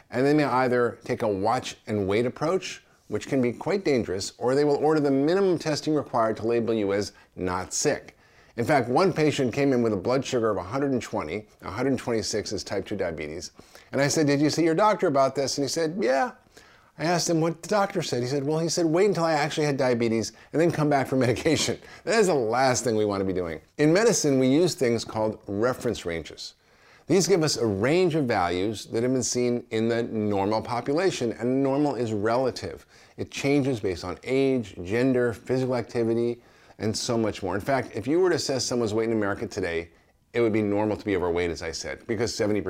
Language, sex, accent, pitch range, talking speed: English, male, American, 110-145 Hz, 220 wpm